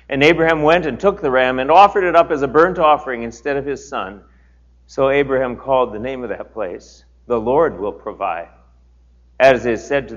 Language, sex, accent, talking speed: English, male, American, 205 wpm